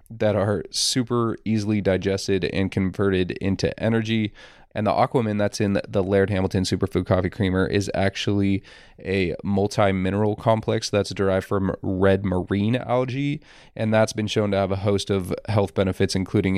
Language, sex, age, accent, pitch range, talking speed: English, male, 20-39, American, 95-110 Hz, 155 wpm